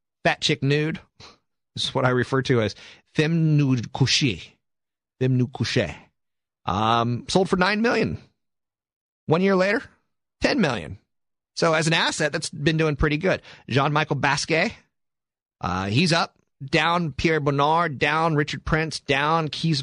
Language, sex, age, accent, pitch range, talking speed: English, male, 40-59, American, 130-165 Hz, 145 wpm